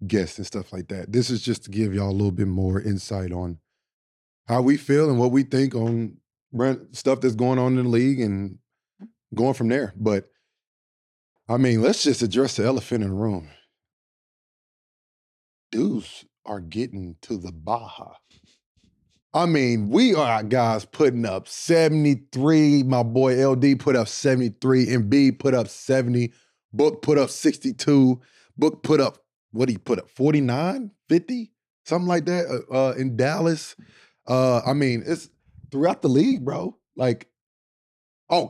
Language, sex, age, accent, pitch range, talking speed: English, male, 20-39, American, 110-140 Hz, 155 wpm